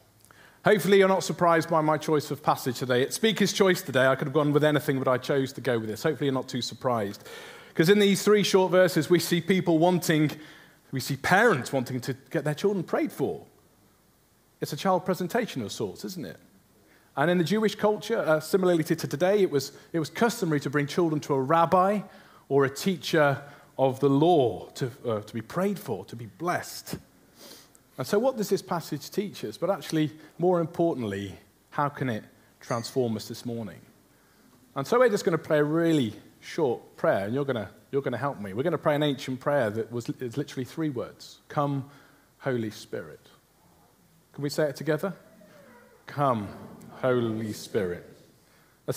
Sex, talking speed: male, 195 wpm